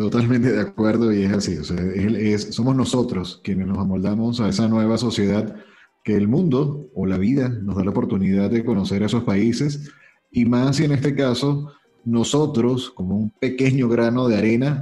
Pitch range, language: 105-135 Hz, Spanish